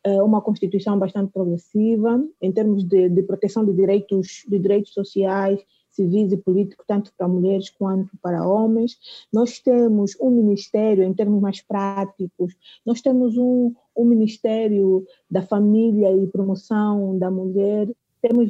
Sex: female